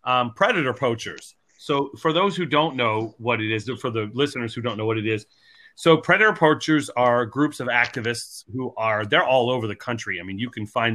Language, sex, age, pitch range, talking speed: English, male, 30-49, 115-140 Hz, 220 wpm